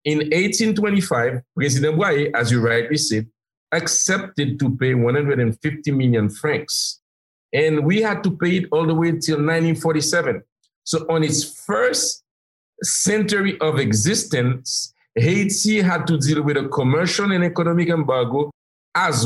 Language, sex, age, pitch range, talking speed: English, male, 50-69, 130-175 Hz, 135 wpm